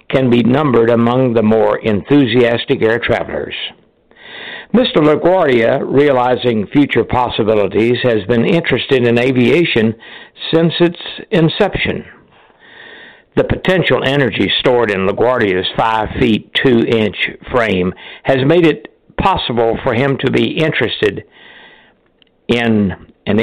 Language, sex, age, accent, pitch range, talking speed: English, male, 60-79, American, 110-145 Hz, 115 wpm